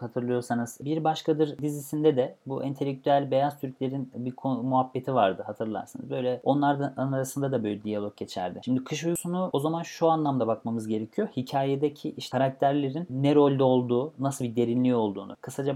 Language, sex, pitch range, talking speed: Turkish, male, 120-150 Hz, 150 wpm